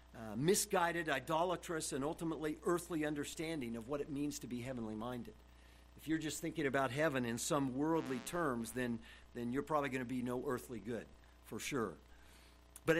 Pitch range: 120-170 Hz